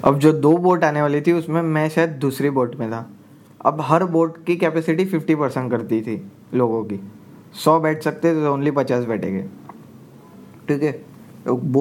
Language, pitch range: Hindi, 115-155 Hz